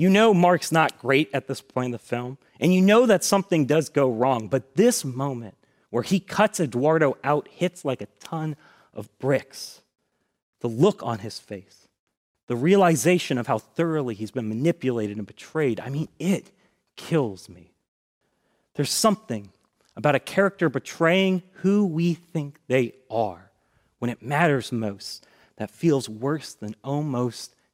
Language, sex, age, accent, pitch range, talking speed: English, male, 30-49, American, 110-160 Hz, 160 wpm